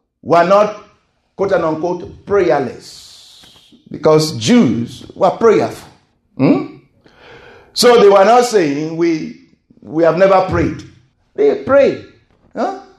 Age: 50-69